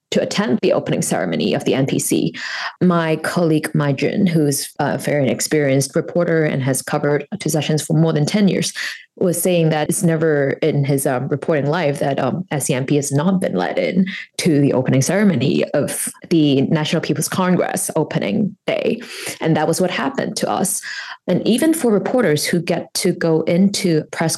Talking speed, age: 180 wpm, 20-39